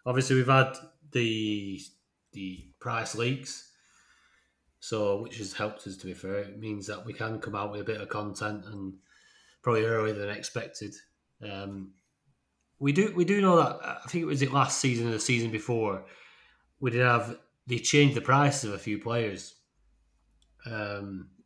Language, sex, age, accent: English, male, 30-49, British